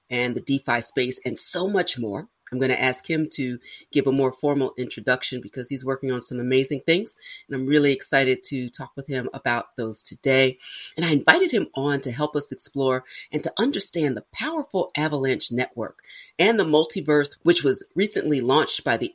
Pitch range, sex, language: 125-150 Hz, female, English